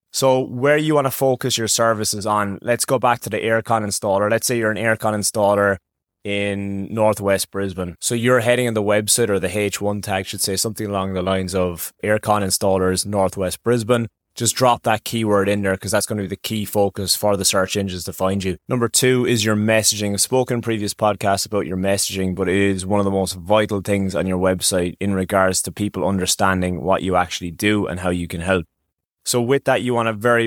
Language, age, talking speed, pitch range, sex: English, 20-39, 225 wpm, 95-115 Hz, male